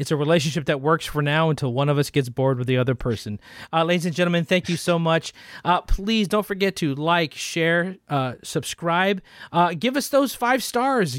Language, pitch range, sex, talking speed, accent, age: English, 150-205 Hz, male, 215 wpm, American, 40-59